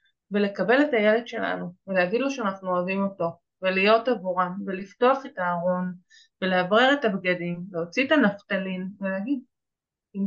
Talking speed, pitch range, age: 130 wpm, 195-255 Hz, 20-39